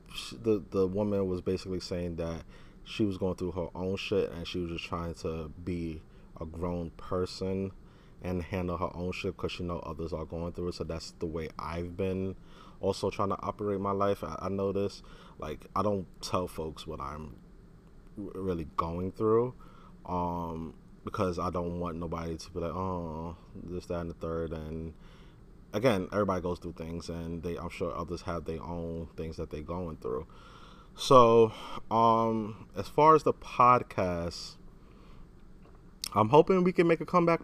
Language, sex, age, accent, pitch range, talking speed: English, male, 20-39, American, 85-110 Hz, 180 wpm